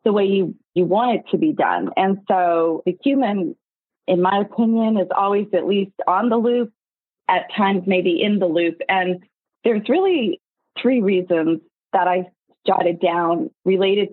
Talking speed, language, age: 165 wpm, English, 30-49